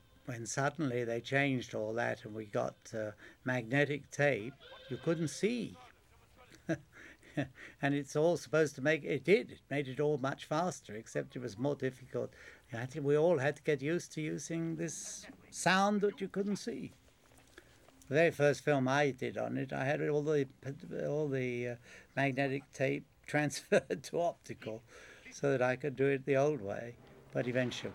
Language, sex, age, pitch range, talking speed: English, male, 60-79, 120-150 Hz, 175 wpm